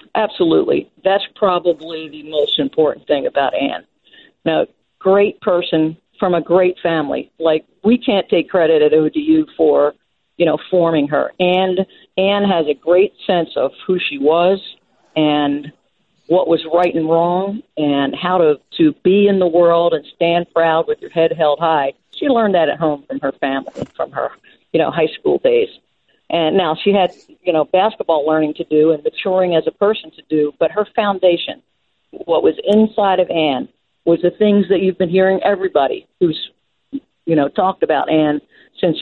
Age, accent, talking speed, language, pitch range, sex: 50-69, American, 175 wpm, English, 155-200 Hz, female